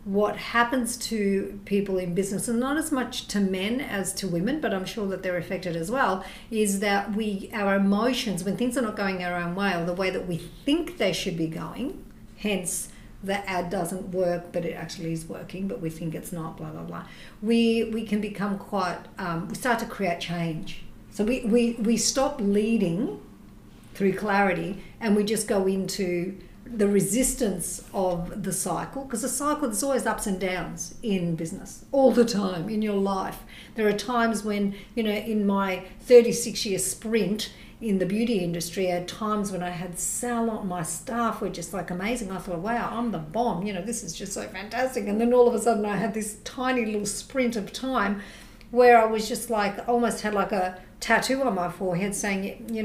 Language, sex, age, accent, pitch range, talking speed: English, female, 50-69, Australian, 185-230 Hz, 200 wpm